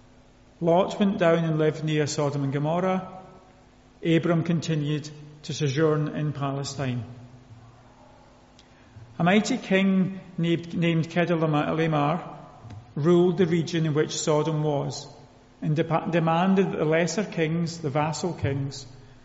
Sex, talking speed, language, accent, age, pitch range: male, 110 wpm, English, British, 40-59, 130-170 Hz